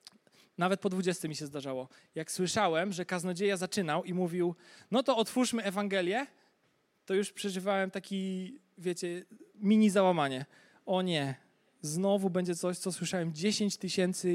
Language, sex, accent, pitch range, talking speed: Polish, male, native, 185-225 Hz, 140 wpm